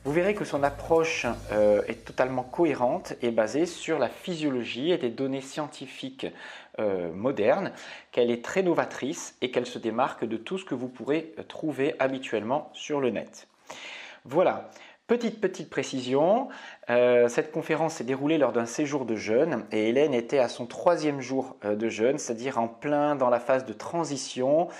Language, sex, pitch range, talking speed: English, male, 120-150 Hz, 160 wpm